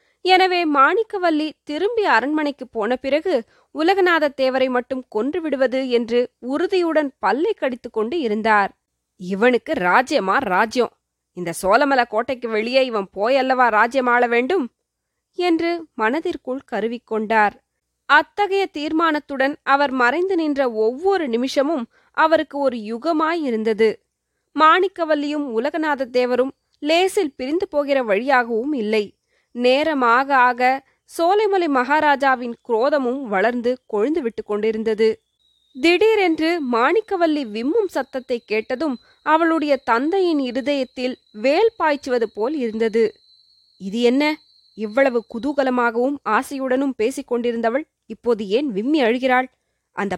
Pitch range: 230-310 Hz